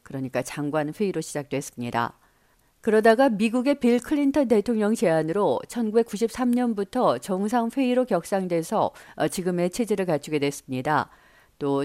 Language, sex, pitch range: Korean, female, 170-240 Hz